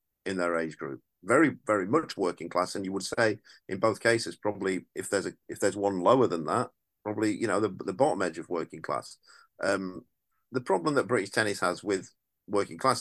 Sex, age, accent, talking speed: male, 40-59, British, 210 wpm